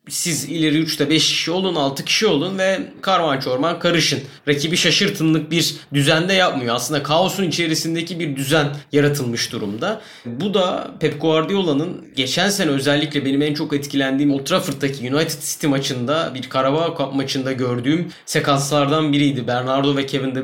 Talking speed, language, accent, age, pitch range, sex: 150 wpm, Turkish, native, 30-49, 135-165 Hz, male